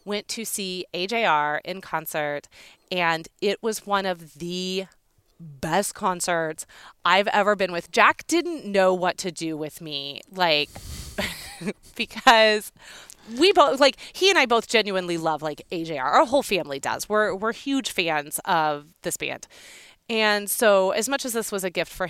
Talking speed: 165 wpm